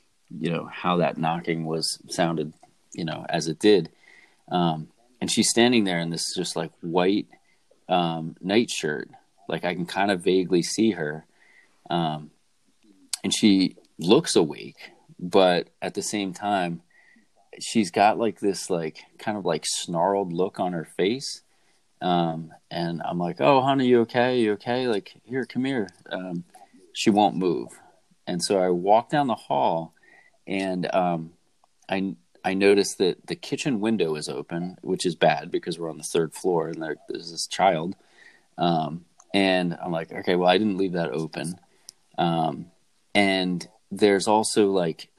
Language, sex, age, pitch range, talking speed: English, male, 30-49, 80-100 Hz, 160 wpm